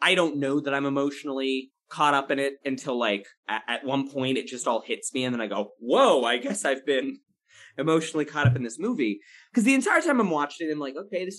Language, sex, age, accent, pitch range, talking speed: English, male, 20-39, American, 130-185 Hz, 250 wpm